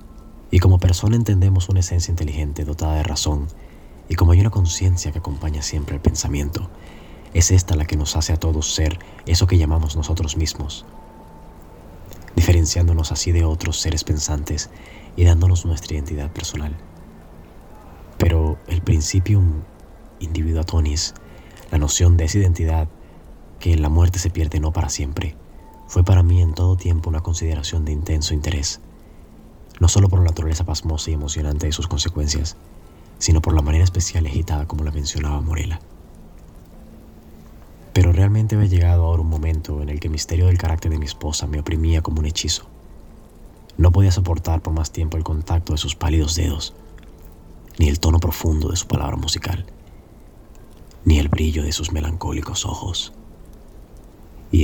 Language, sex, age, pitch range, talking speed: Spanish, male, 30-49, 75-90 Hz, 160 wpm